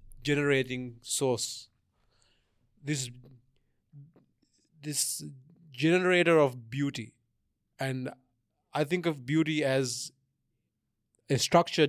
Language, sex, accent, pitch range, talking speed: English, male, Indian, 120-155 Hz, 75 wpm